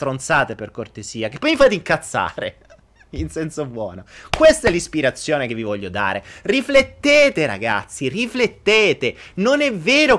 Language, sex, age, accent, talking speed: Italian, male, 30-49, native, 140 wpm